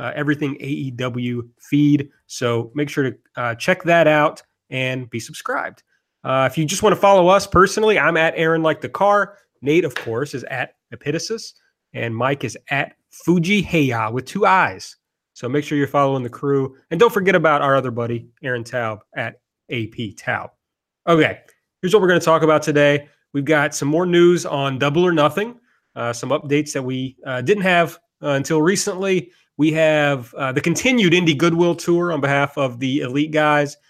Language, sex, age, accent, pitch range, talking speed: English, male, 30-49, American, 130-165 Hz, 190 wpm